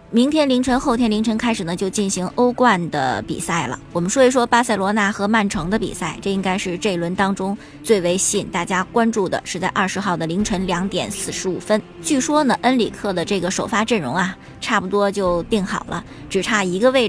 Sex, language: male, Chinese